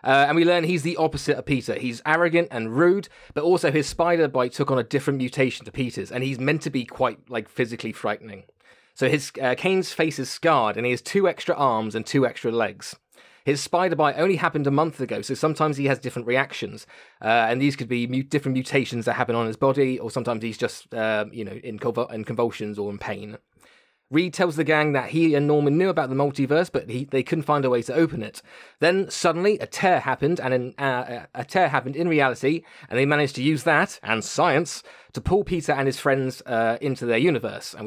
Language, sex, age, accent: English, male, 20-39, British